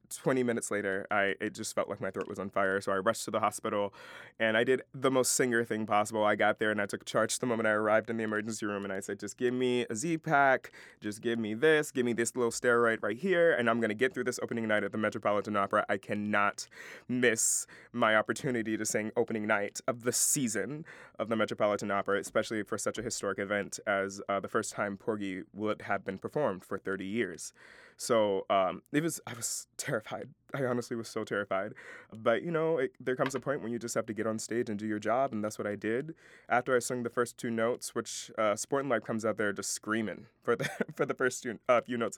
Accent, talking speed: American, 245 wpm